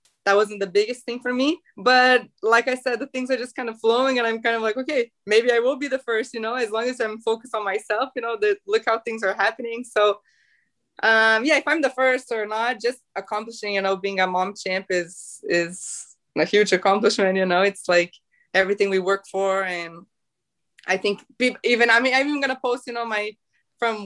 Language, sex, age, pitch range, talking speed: English, female, 20-39, 190-235 Hz, 230 wpm